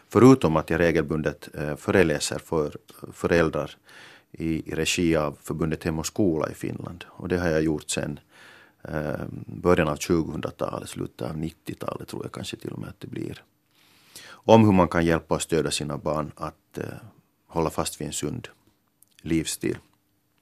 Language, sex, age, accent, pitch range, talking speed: Finnish, male, 40-59, native, 75-90 Hz, 155 wpm